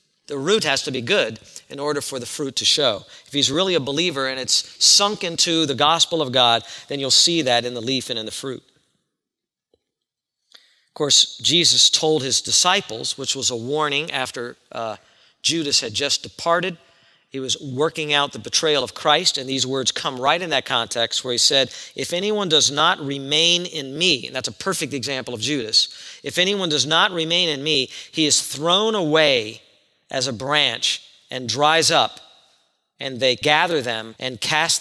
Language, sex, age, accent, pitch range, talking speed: English, male, 40-59, American, 130-170 Hz, 190 wpm